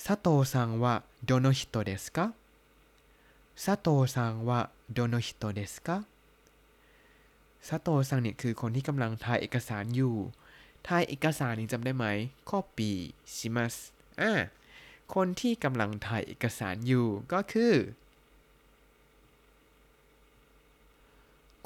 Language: Thai